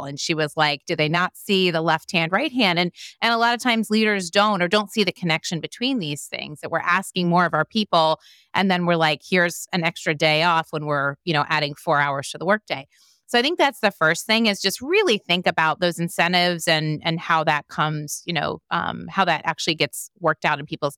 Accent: American